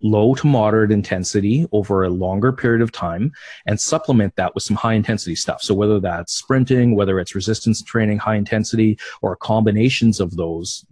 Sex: male